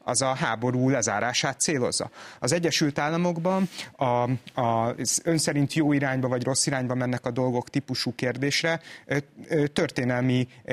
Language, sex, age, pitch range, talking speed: Hungarian, male, 30-49, 120-155 Hz, 130 wpm